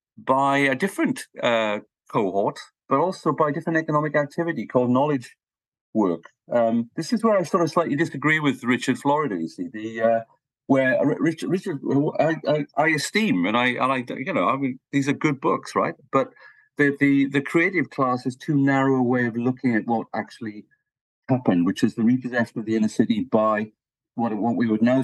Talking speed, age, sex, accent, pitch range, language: 190 wpm, 50-69, male, British, 110-145 Hz, English